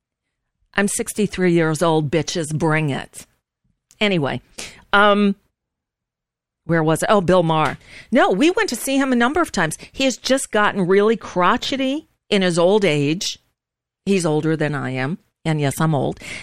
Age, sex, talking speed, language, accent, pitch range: 50-69, female, 160 wpm, English, American, 185-265 Hz